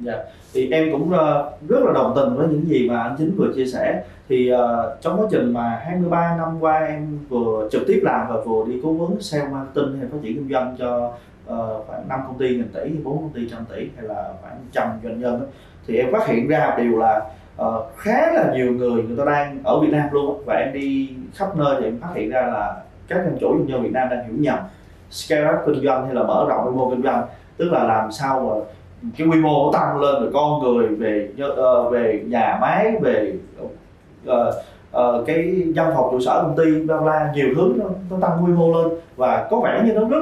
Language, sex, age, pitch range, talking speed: Vietnamese, male, 20-39, 120-155 Hz, 240 wpm